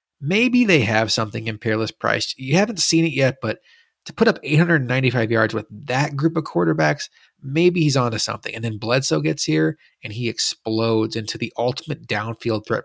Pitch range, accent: 110-140 Hz, American